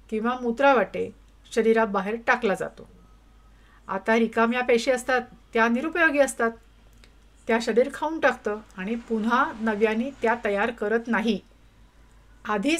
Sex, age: female, 50-69